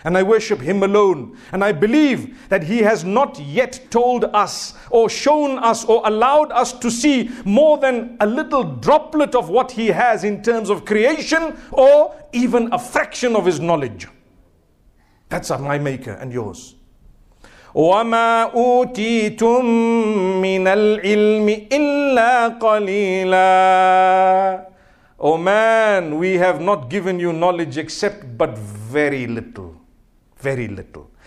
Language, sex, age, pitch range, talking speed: English, male, 50-69, 190-255 Hz, 120 wpm